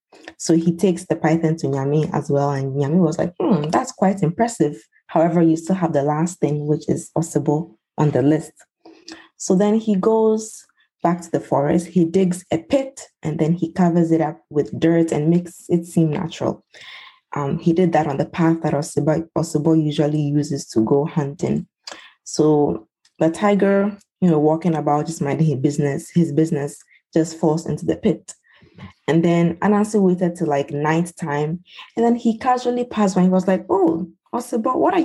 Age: 20-39